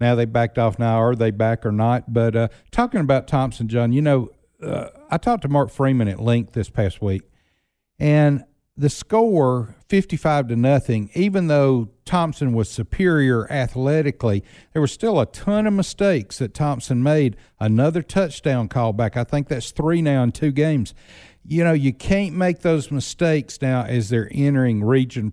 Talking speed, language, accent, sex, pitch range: 175 wpm, English, American, male, 115-150 Hz